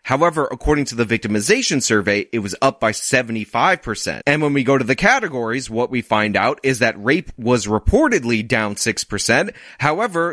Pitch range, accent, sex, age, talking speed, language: 110-150 Hz, American, male, 30-49, 175 wpm, English